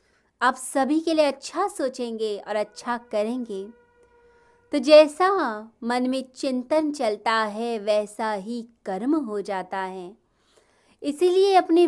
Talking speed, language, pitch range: 120 wpm, Hindi, 215-290 Hz